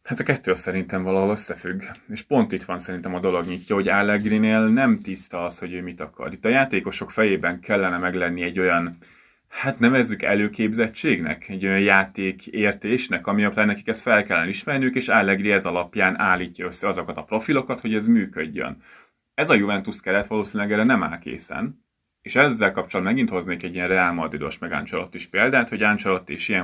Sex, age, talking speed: male, 30-49, 180 wpm